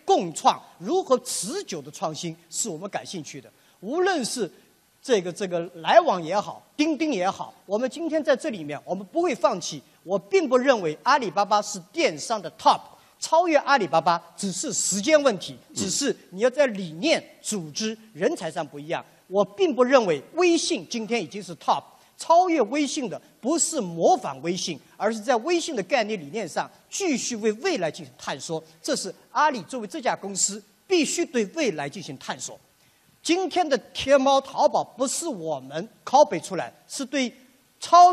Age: 50-69